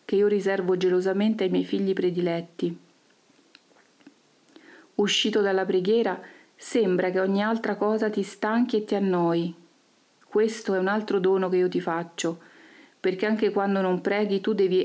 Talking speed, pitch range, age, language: 150 wpm, 180-215 Hz, 40-59, Italian